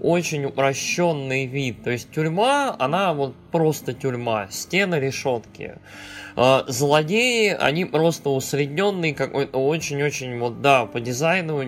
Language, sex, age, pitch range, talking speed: Russian, male, 20-39, 120-155 Hz, 115 wpm